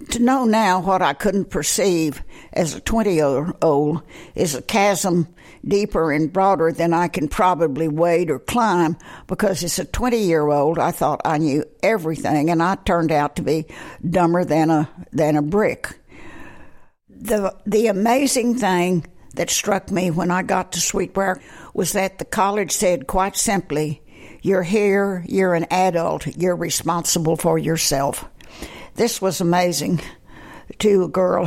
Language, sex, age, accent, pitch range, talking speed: English, female, 60-79, American, 160-195 Hz, 150 wpm